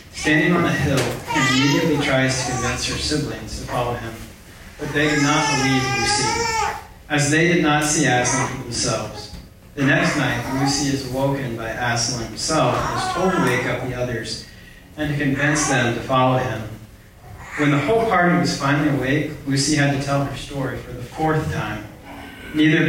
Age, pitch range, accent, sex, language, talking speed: 40-59, 120-155 Hz, American, male, English, 185 wpm